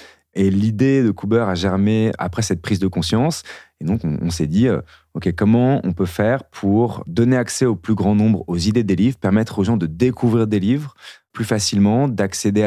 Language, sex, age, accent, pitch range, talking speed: French, male, 30-49, French, 85-110 Hz, 205 wpm